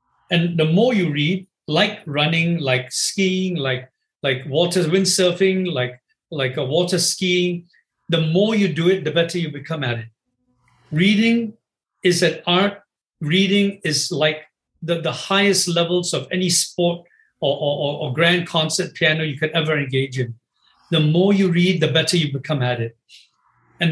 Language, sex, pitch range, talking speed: English, male, 150-185 Hz, 165 wpm